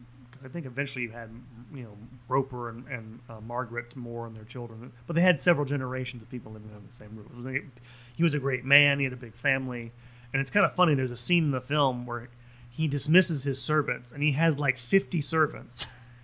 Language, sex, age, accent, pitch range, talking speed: English, male, 30-49, American, 120-145 Hz, 230 wpm